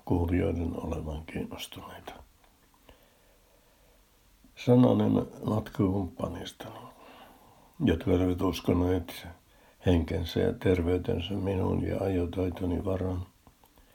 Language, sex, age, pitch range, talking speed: Finnish, male, 60-79, 85-95 Hz, 70 wpm